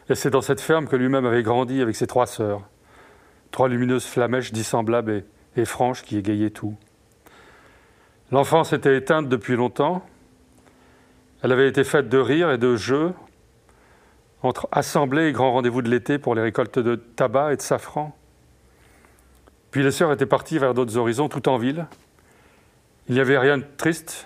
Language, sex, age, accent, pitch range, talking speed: French, male, 40-59, French, 110-135 Hz, 170 wpm